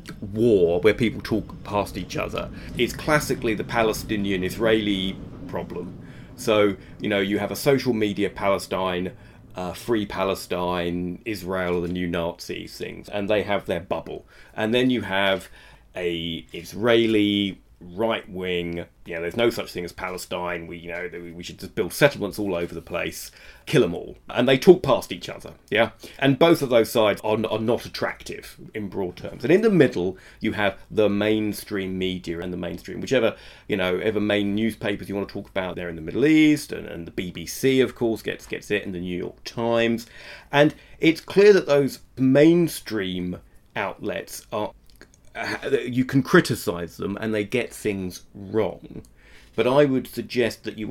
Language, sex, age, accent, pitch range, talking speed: English, male, 30-49, British, 90-115 Hz, 180 wpm